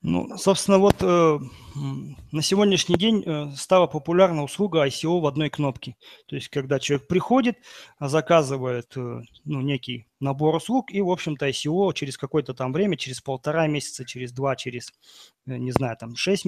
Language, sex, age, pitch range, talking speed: Russian, male, 30-49, 135-185 Hz, 155 wpm